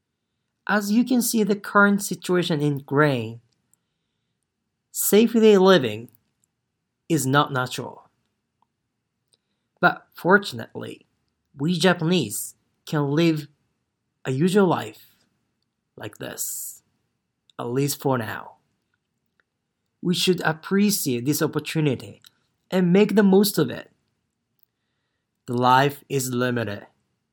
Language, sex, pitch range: Japanese, male, 125-175 Hz